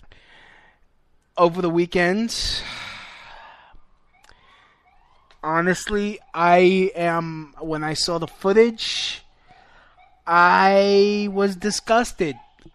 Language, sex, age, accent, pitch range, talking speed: English, male, 20-39, American, 150-210 Hz, 65 wpm